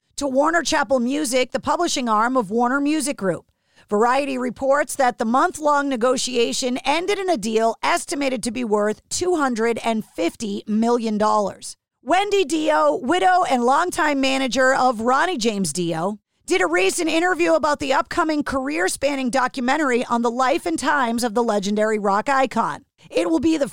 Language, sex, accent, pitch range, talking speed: English, female, American, 225-285 Hz, 150 wpm